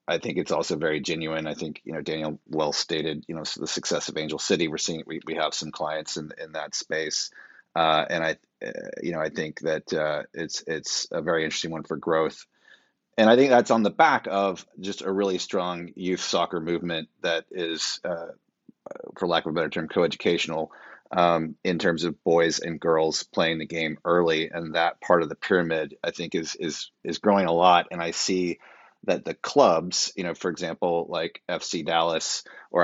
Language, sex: English, male